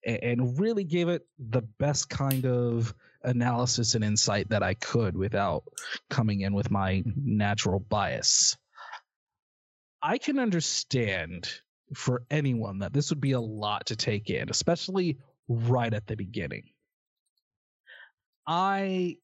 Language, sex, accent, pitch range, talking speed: English, male, American, 115-155 Hz, 130 wpm